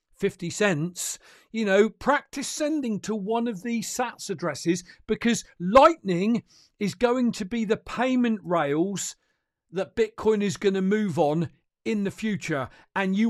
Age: 50-69